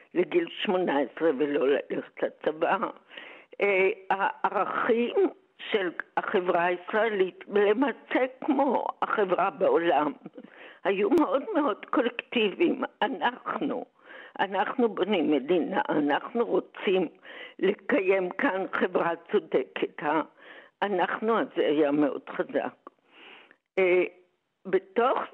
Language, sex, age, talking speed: Hebrew, female, 60-79, 80 wpm